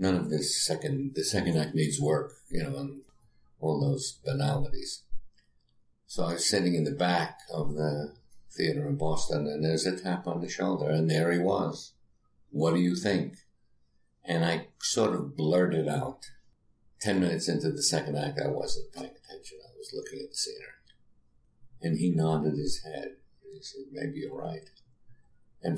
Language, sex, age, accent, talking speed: English, male, 60-79, American, 175 wpm